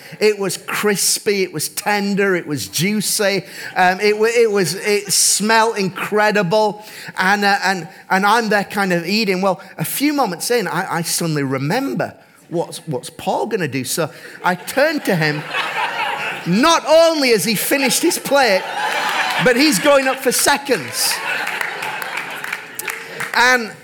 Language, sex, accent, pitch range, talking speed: English, male, British, 185-270 Hz, 150 wpm